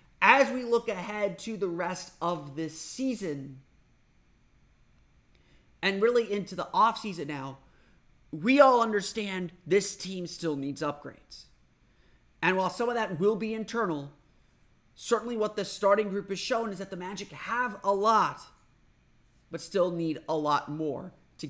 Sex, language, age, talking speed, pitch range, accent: male, English, 30-49, 150 wpm, 145-205 Hz, American